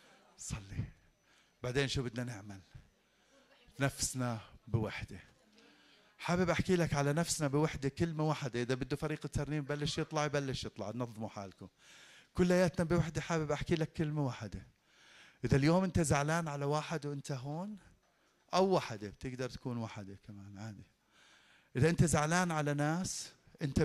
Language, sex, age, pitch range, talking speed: Arabic, male, 40-59, 140-215 Hz, 135 wpm